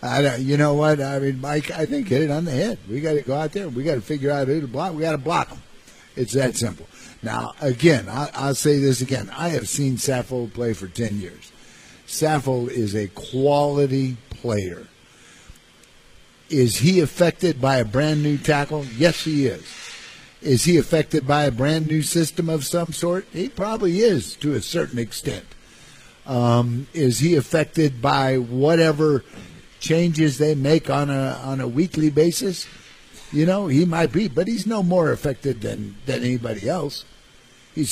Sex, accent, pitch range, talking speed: male, American, 125-160 Hz, 180 wpm